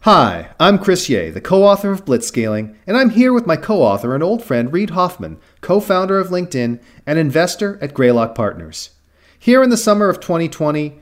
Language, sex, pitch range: English, male, 115-180 Hz